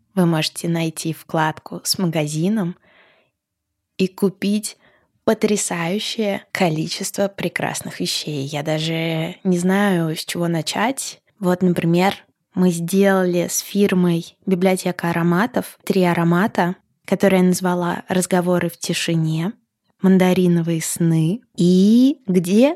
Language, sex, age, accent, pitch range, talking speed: Russian, female, 20-39, native, 170-195 Hz, 105 wpm